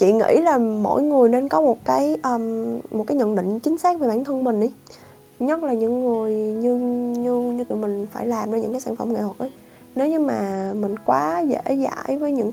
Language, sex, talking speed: Vietnamese, female, 235 wpm